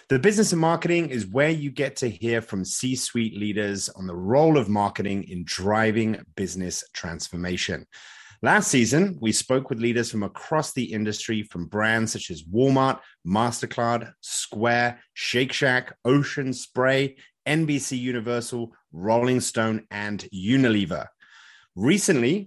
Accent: British